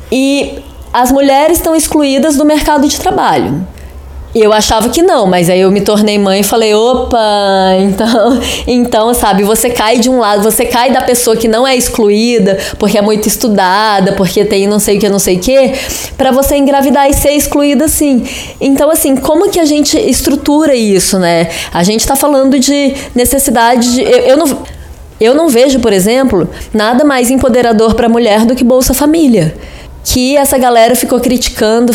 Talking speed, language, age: 180 wpm, Portuguese, 20-39